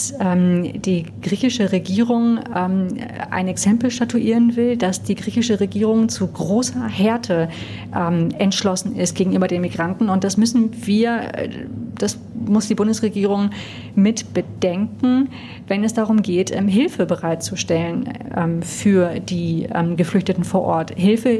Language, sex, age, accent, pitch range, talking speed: German, female, 30-49, German, 180-215 Hz, 115 wpm